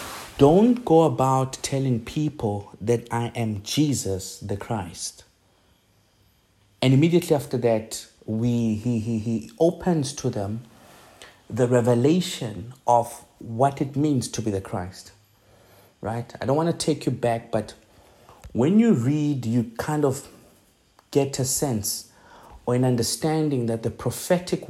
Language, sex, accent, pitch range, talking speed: English, male, South African, 110-130 Hz, 135 wpm